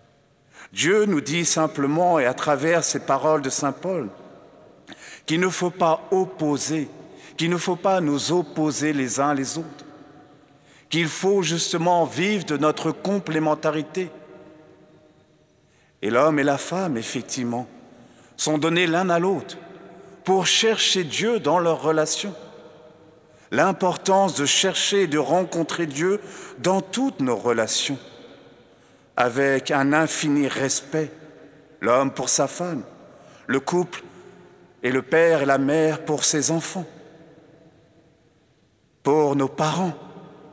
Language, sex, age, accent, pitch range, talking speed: French, male, 50-69, French, 145-180 Hz, 125 wpm